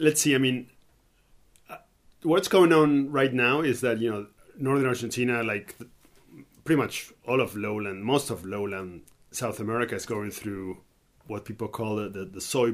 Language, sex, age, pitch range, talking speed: English, male, 30-49, 100-125 Hz, 175 wpm